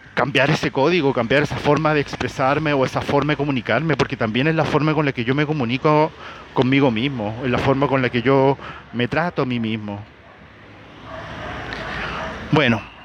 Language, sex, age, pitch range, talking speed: Spanish, male, 40-59, 125-150 Hz, 180 wpm